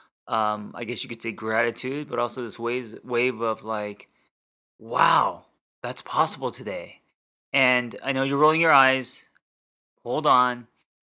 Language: English